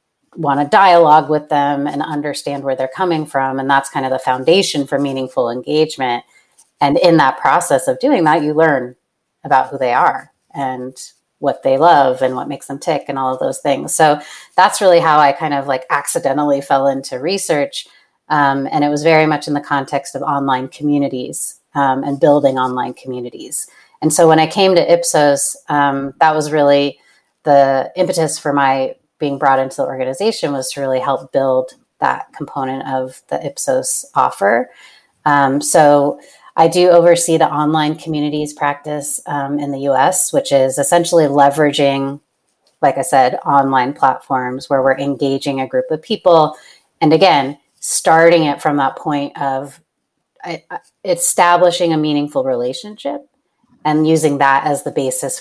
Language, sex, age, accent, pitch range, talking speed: English, female, 30-49, American, 135-155 Hz, 170 wpm